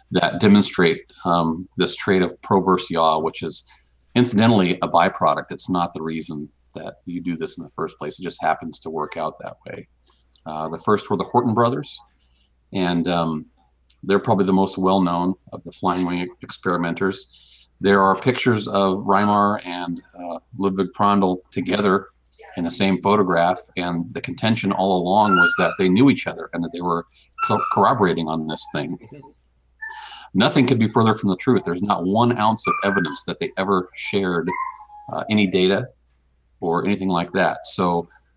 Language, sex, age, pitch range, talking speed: English, male, 40-59, 85-110 Hz, 175 wpm